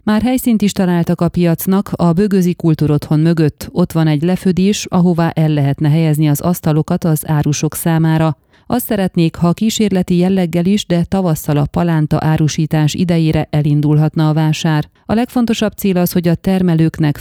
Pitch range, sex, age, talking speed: 155-185 Hz, female, 30-49, 160 wpm